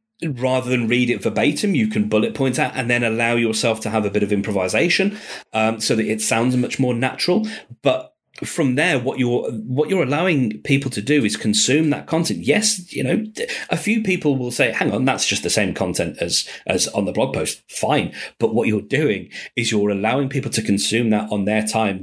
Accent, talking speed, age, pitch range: British, 215 wpm, 30-49, 105-130 Hz